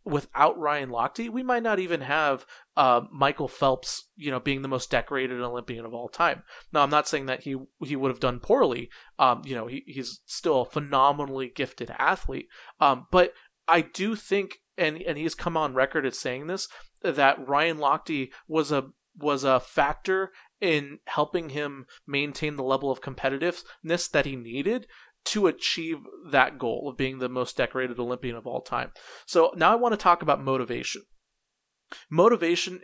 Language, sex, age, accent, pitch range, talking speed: English, male, 30-49, American, 135-170 Hz, 175 wpm